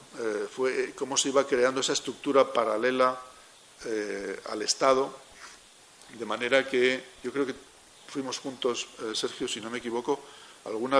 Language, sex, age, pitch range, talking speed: Spanish, male, 50-69, 115-145 Hz, 140 wpm